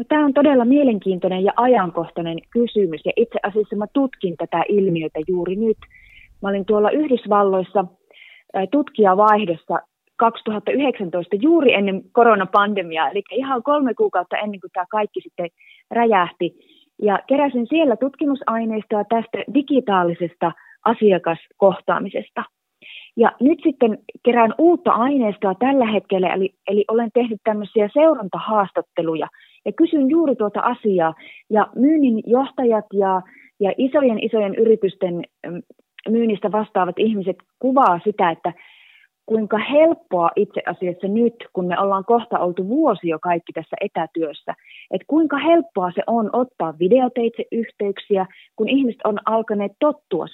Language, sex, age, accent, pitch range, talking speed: Finnish, female, 30-49, native, 185-240 Hz, 125 wpm